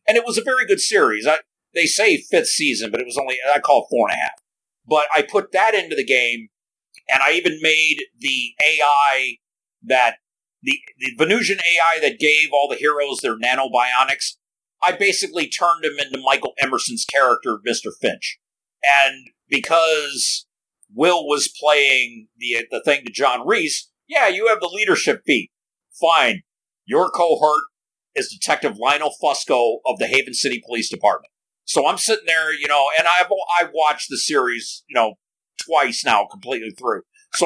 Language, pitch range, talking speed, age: English, 135-210 Hz, 170 wpm, 50-69